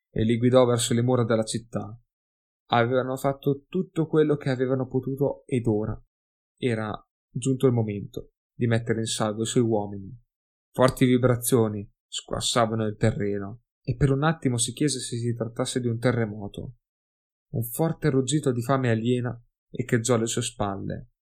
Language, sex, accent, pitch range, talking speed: Italian, male, native, 110-130 Hz, 155 wpm